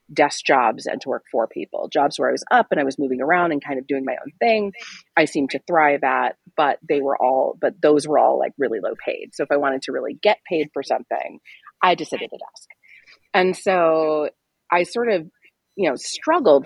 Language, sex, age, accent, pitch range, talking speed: English, female, 30-49, American, 145-200 Hz, 235 wpm